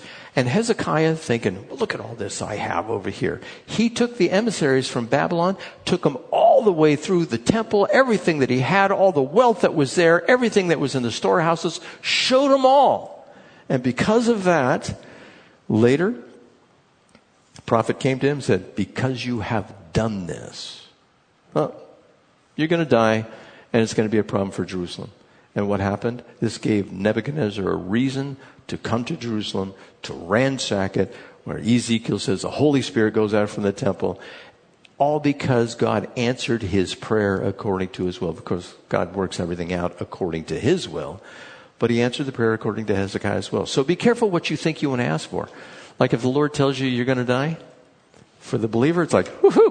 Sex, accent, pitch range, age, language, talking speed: male, American, 110-175 Hz, 60-79, English, 185 wpm